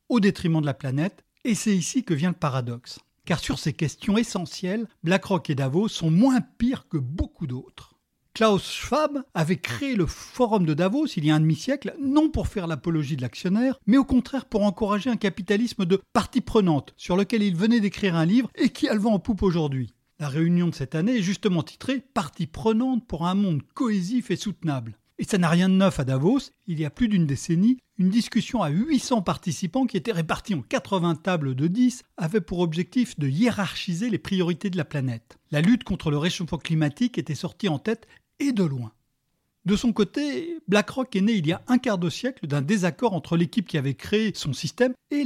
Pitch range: 160-230 Hz